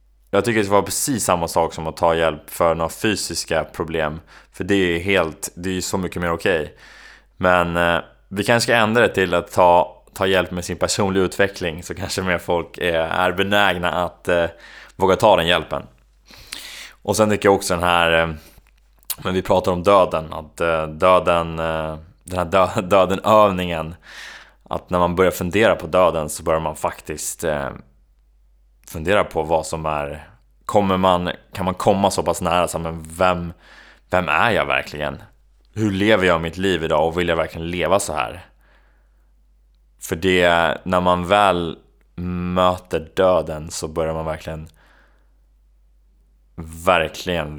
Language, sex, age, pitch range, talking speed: Swedish, male, 20-39, 80-90 Hz, 165 wpm